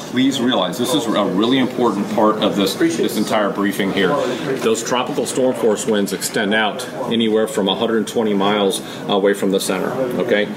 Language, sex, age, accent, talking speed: English, male, 40-59, American, 170 wpm